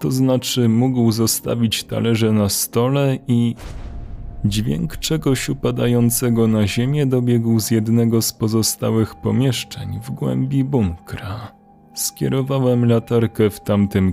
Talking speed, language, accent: 110 wpm, Polish, native